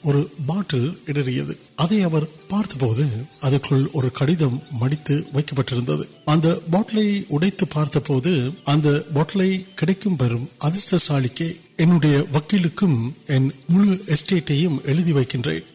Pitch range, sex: 130-170 Hz, male